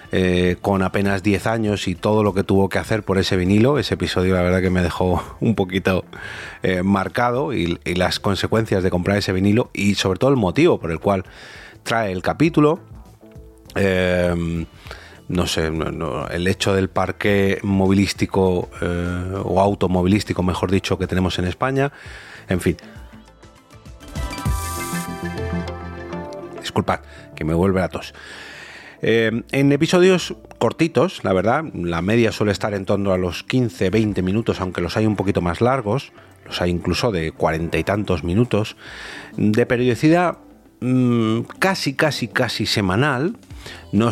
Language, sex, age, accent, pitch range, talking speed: Spanish, male, 30-49, Spanish, 90-110 Hz, 150 wpm